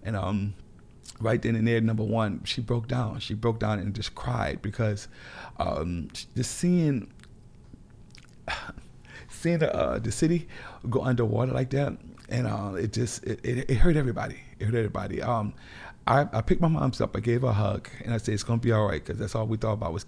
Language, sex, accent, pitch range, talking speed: English, male, American, 105-125 Hz, 210 wpm